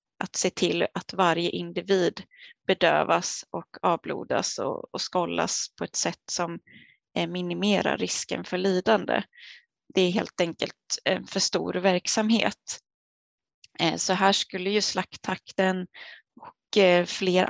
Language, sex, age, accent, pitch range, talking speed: Swedish, female, 20-39, native, 180-215 Hz, 115 wpm